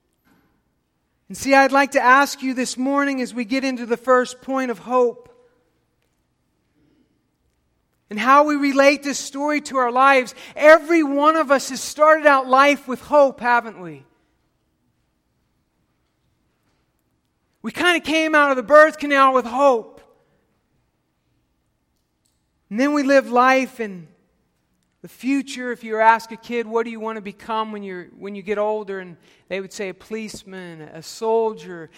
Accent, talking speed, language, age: American, 155 wpm, English, 50-69